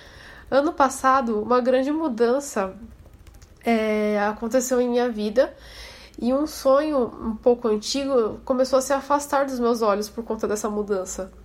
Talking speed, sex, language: 135 wpm, female, Portuguese